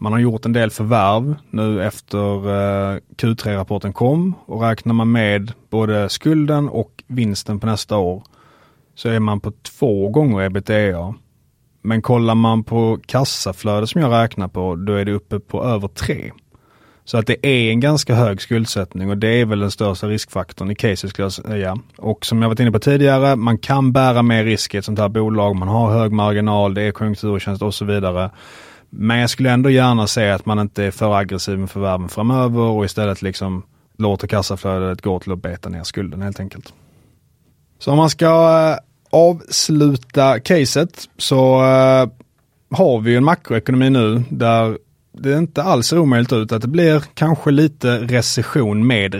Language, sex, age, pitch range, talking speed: Swedish, male, 30-49, 100-130 Hz, 175 wpm